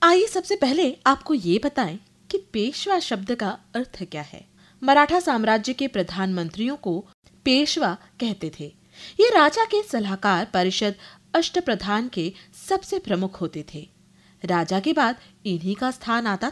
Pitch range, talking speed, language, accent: 190-290 Hz, 80 wpm, Hindi, native